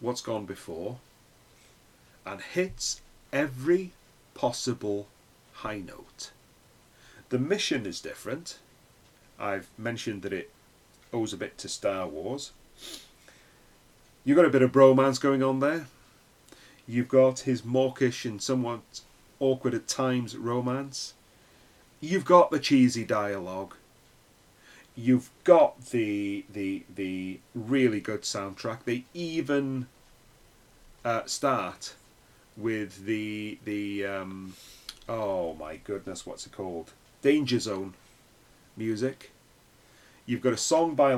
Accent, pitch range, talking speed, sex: British, 110-135 Hz, 110 wpm, male